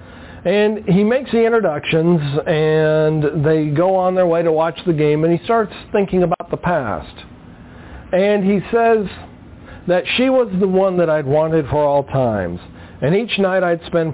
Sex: male